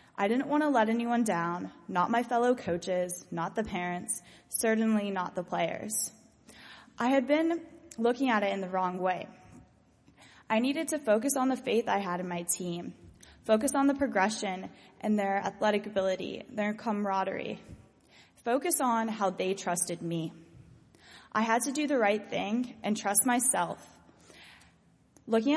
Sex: female